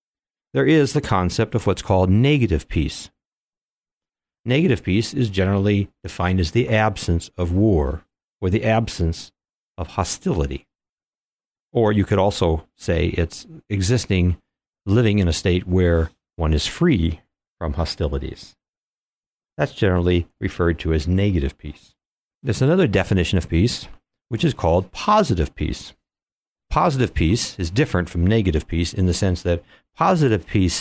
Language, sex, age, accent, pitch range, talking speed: English, male, 60-79, American, 80-105 Hz, 140 wpm